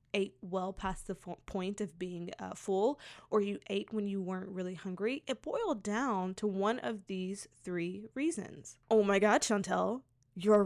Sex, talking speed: female, 175 wpm